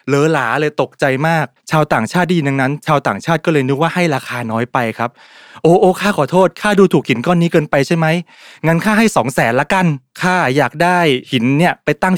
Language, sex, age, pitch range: Thai, male, 20-39, 120-170 Hz